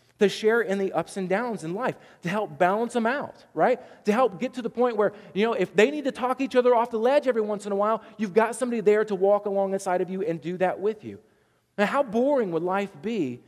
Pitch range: 155-240 Hz